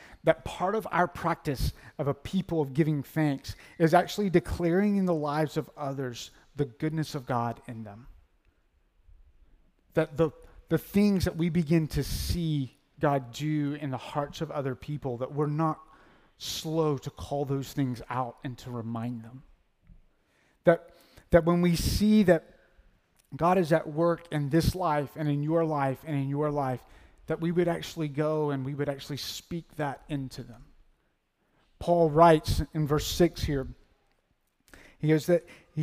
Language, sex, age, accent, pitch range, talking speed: English, male, 30-49, American, 130-165 Hz, 165 wpm